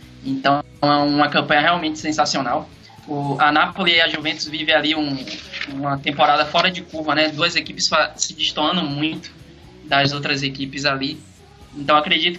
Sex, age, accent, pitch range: male, 20-39, Brazilian, 140-155 Hz